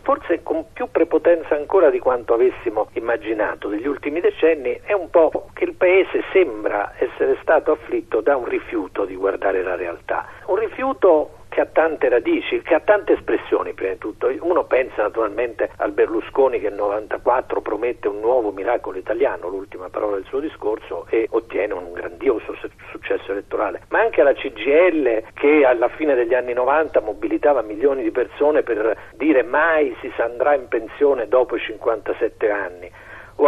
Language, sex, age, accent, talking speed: Italian, male, 50-69, native, 160 wpm